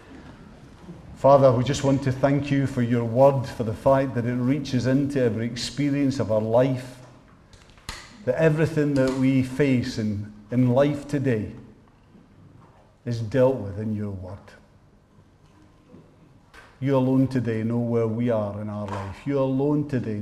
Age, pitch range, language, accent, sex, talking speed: 50-69, 105-130 Hz, English, British, male, 150 wpm